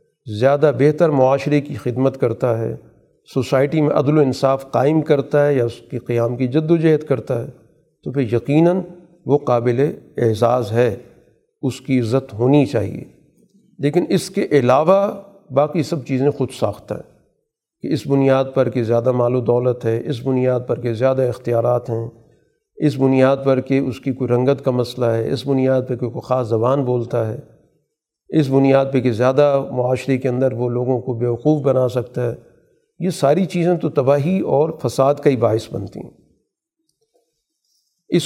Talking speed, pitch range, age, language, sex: 175 wpm, 125-160 Hz, 50-69, Urdu, male